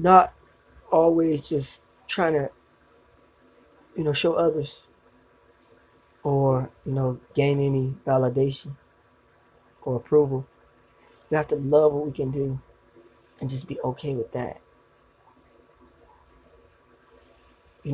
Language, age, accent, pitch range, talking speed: English, 20-39, American, 130-155 Hz, 105 wpm